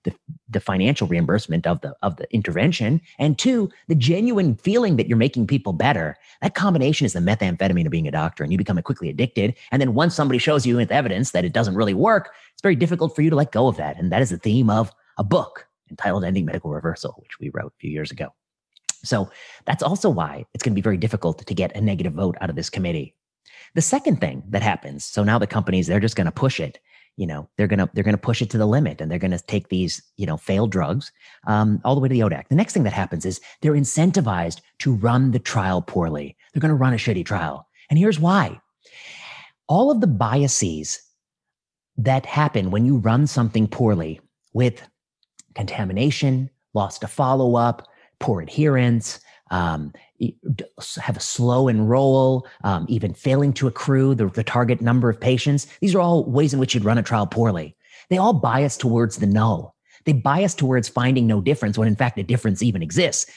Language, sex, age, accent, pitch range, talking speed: English, male, 30-49, American, 105-140 Hz, 205 wpm